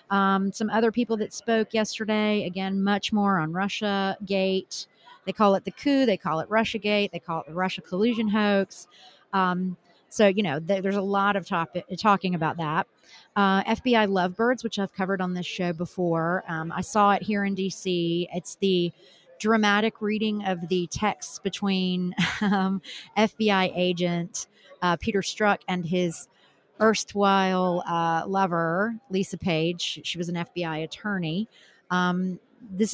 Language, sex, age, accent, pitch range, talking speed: English, female, 40-59, American, 175-210 Hz, 160 wpm